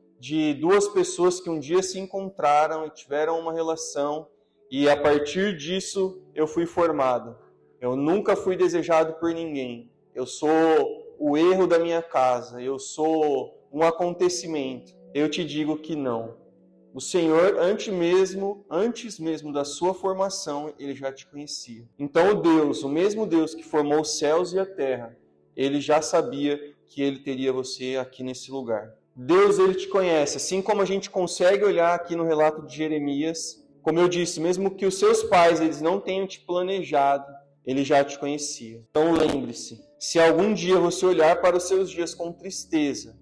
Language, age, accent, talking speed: Portuguese, 30-49, Brazilian, 170 wpm